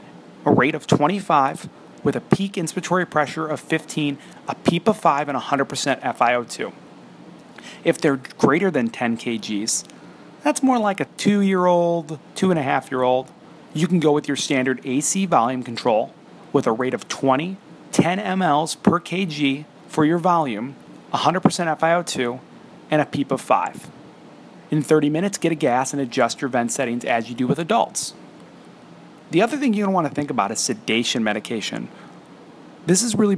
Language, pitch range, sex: English, 130-170 Hz, male